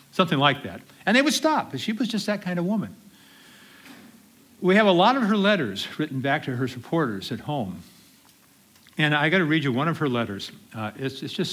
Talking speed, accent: 220 wpm, American